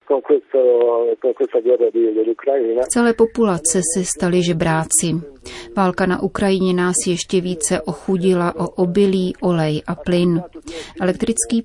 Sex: female